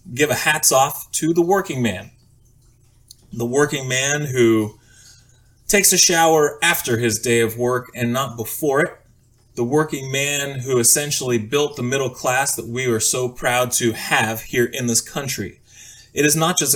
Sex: male